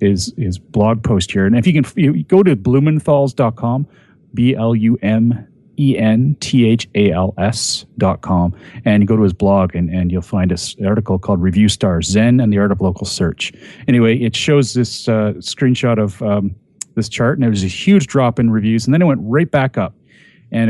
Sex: male